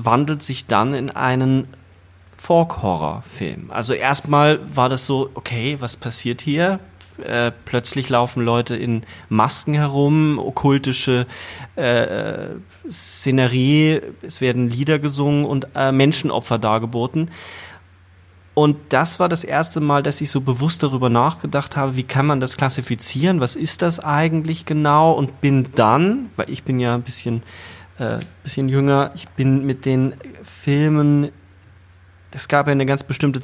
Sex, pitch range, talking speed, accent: male, 120-145 Hz, 145 wpm, German